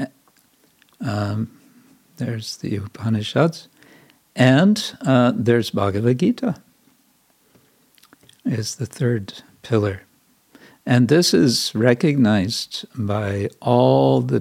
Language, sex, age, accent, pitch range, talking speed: English, male, 60-79, American, 105-125 Hz, 85 wpm